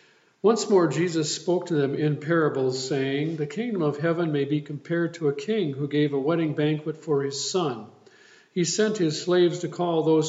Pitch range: 145-185 Hz